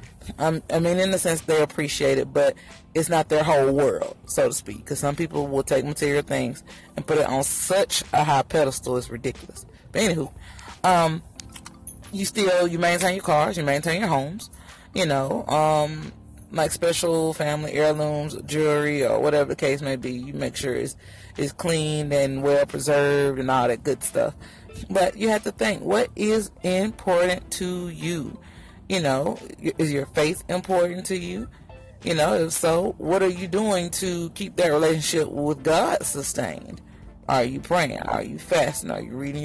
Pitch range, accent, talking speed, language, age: 135-170 Hz, American, 180 wpm, English, 30-49